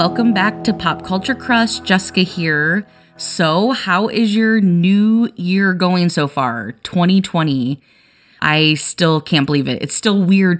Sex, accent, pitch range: female, American, 155-210 Hz